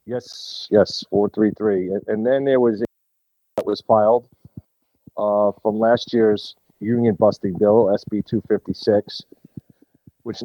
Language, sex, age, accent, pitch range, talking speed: English, male, 50-69, American, 100-120 Hz, 130 wpm